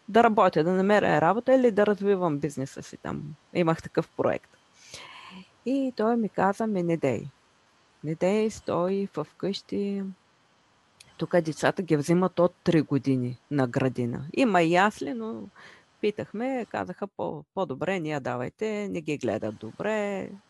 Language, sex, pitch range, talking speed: Bulgarian, female, 155-210 Hz, 140 wpm